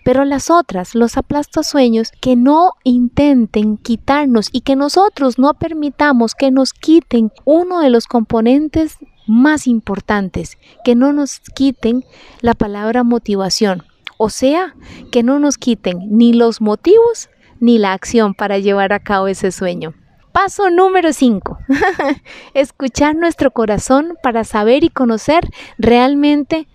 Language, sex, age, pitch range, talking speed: Spanish, female, 30-49, 220-280 Hz, 135 wpm